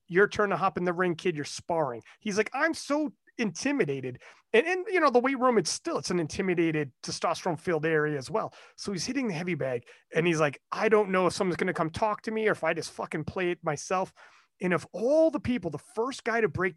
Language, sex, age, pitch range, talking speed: English, male, 30-49, 155-225 Hz, 250 wpm